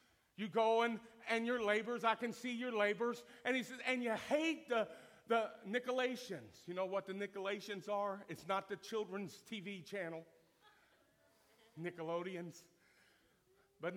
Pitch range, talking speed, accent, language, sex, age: 175-235 Hz, 145 wpm, American, English, male, 50-69